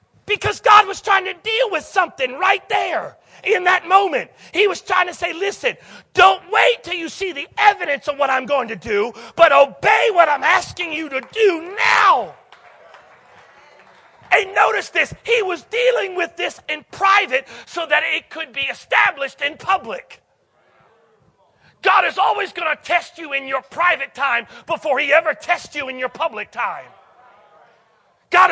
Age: 40-59